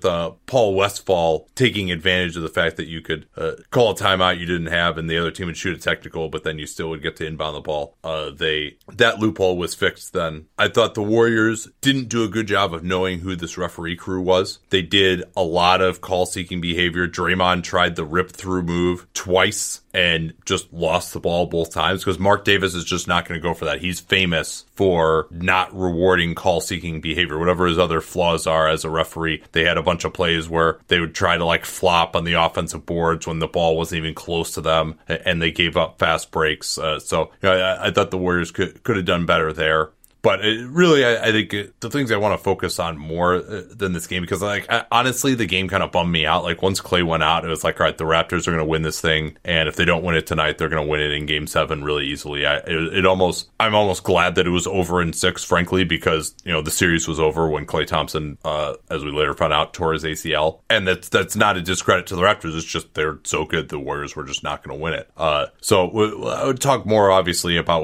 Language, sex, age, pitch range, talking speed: English, male, 30-49, 80-95 Hz, 245 wpm